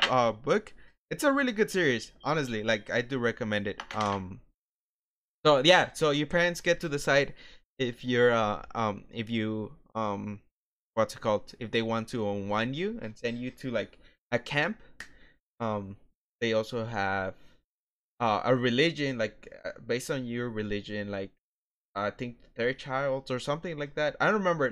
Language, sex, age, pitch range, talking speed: English, male, 20-39, 105-130 Hz, 170 wpm